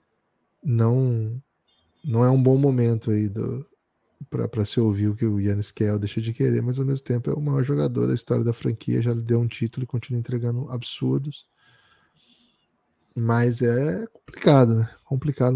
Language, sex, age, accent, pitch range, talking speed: Portuguese, male, 10-29, Brazilian, 115-155 Hz, 175 wpm